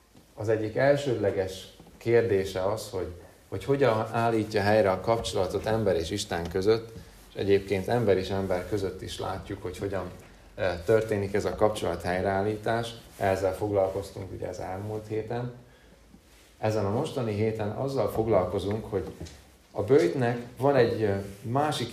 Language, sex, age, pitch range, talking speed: Hungarian, male, 30-49, 95-115 Hz, 135 wpm